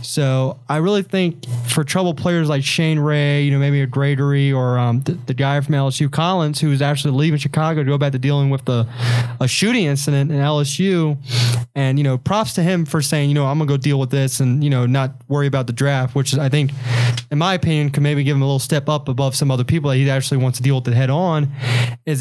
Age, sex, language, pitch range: 20-39, male, English, 125-150 Hz